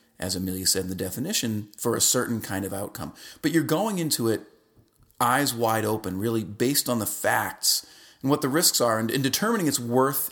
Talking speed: 205 wpm